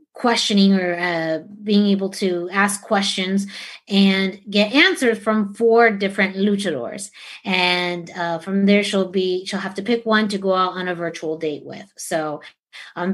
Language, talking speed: English, 165 wpm